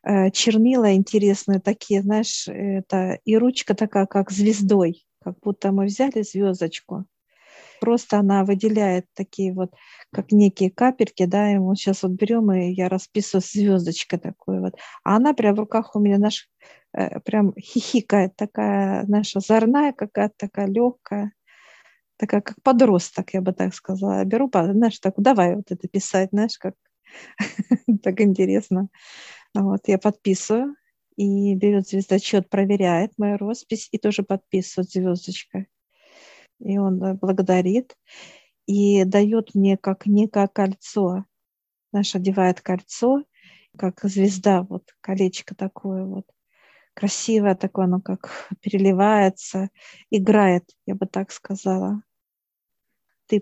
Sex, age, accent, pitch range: female, 50-69, native, 190-210 Hz